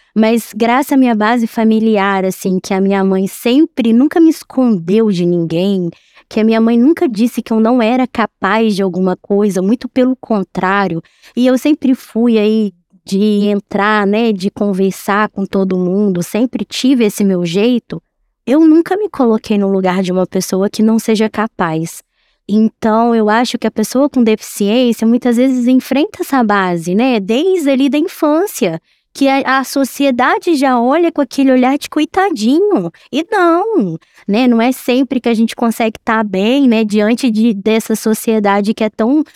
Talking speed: 175 wpm